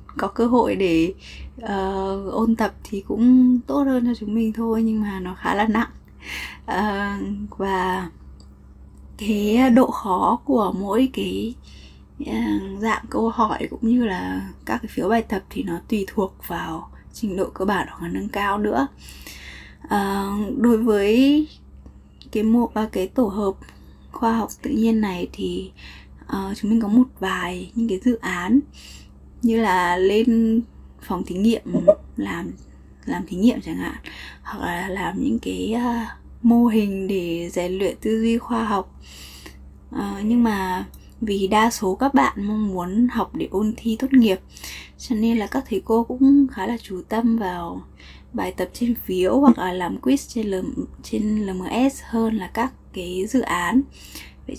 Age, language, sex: 20-39, Vietnamese, female